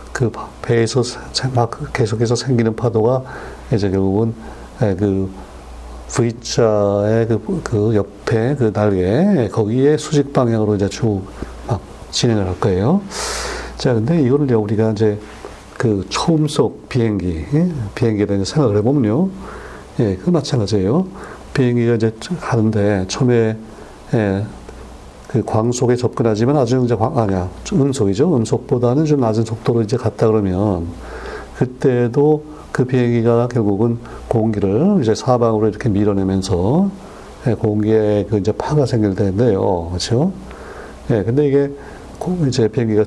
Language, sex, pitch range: Korean, male, 105-130 Hz